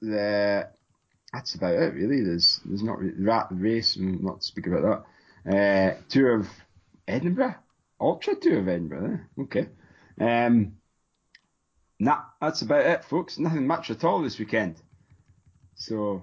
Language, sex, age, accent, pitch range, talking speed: English, male, 30-49, British, 115-155 Hz, 140 wpm